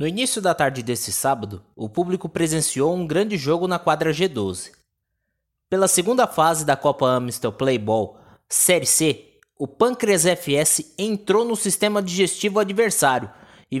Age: 20-39